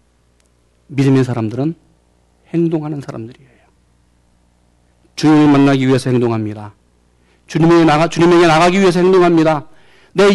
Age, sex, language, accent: 40-59, male, Korean, native